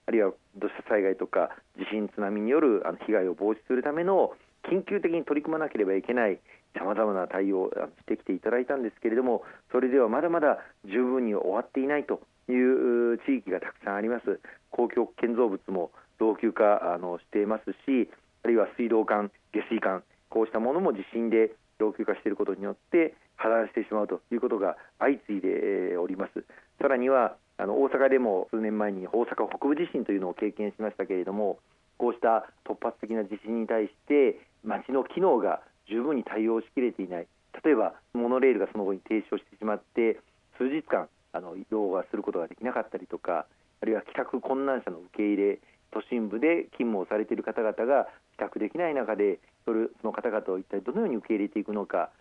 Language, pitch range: Japanese, 105-130 Hz